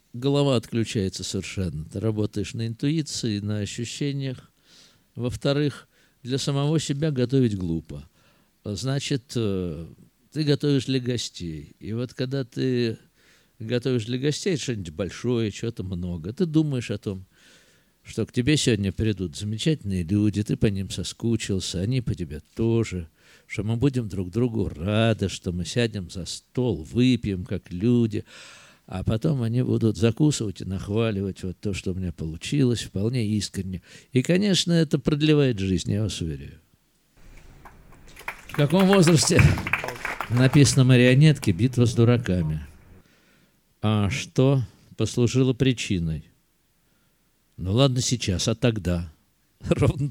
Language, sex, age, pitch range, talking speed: Russian, male, 50-69, 100-135 Hz, 125 wpm